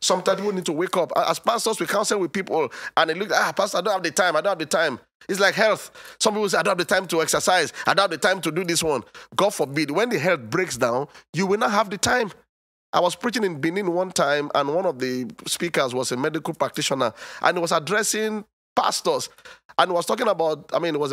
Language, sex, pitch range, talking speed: English, male, 145-200 Hz, 260 wpm